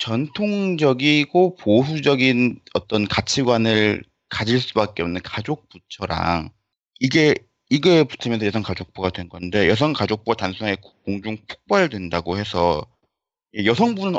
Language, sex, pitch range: Korean, male, 95-125 Hz